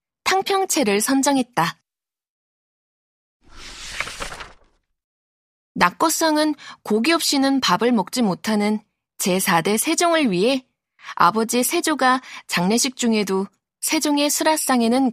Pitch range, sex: 205-290 Hz, female